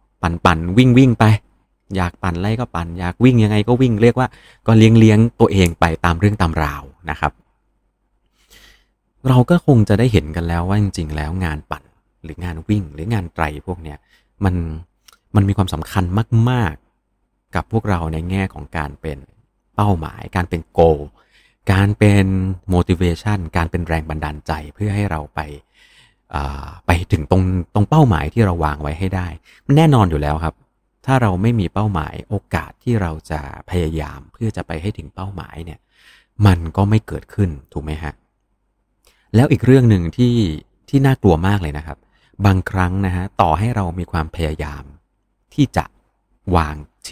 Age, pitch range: 30-49, 80-105 Hz